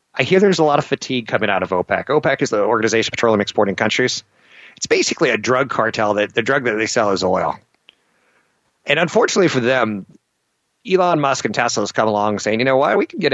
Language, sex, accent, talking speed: English, male, American, 225 wpm